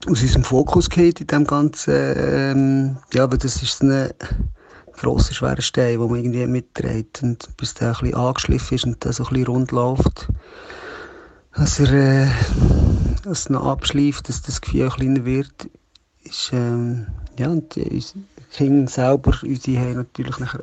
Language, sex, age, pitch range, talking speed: German, male, 50-69, 125-150 Hz, 150 wpm